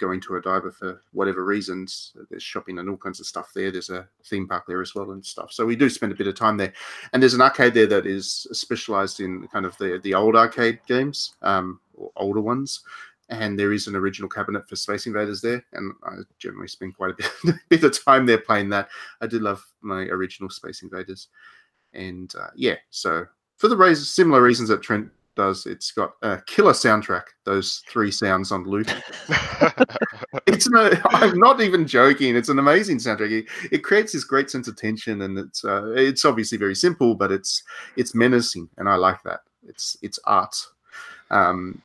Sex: male